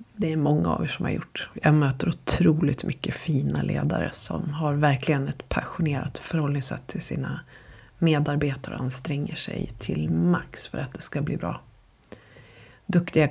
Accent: native